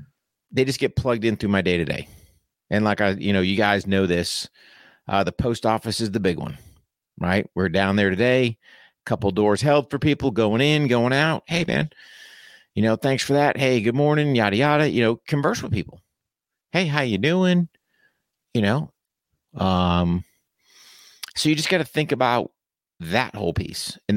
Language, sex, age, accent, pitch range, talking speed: English, male, 50-69, American, 95-135 Hz, 190 wpm